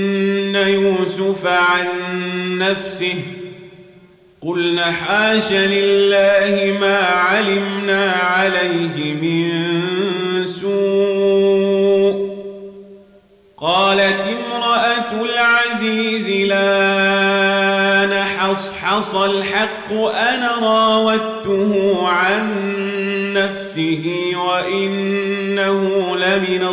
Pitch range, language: 170-195 Hz, Arabic